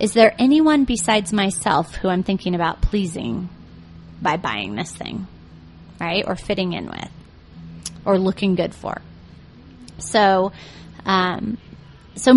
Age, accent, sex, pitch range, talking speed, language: 30-49, American, female, 170-225 Hz, 125 wpm, English